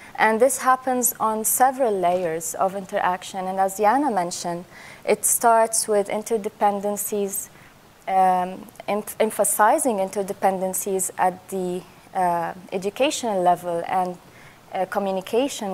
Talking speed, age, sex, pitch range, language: 105 wpm, 20-39, female, 180-215 Hz, English